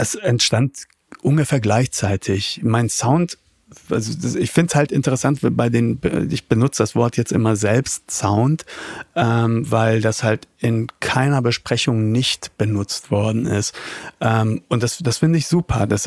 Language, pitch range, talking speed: German, 115-140 Hz, 155 wpm